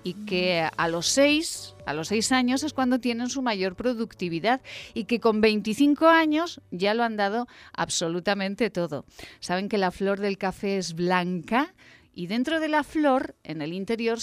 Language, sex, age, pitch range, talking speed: Spanish, female, 40-59, 180-250 Hz, 175 wpm